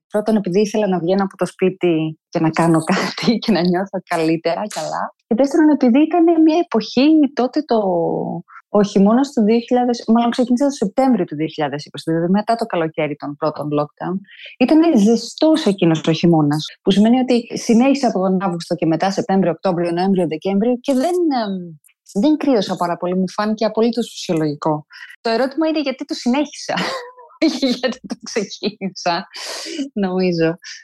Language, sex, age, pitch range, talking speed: Greek, female, 20-39, 180-245 Hz, 150 wpm